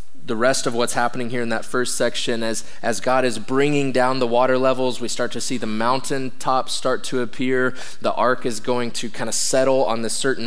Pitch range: 110-130 Hz